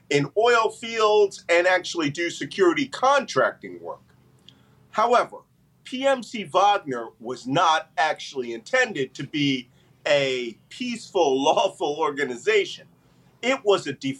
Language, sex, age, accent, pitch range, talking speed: English, male, 40-59, American, 140-205 Hz, 110 wpm